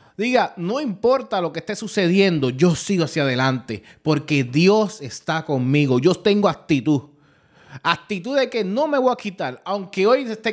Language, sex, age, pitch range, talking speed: Spanish, male, 30-49, 135-190 Hz, 165 wpm